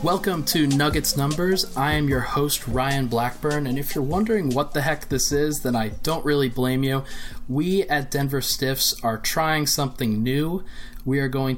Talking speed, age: 185 wpm, 20-39